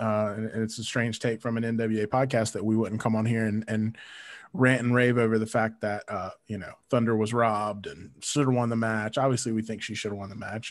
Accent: American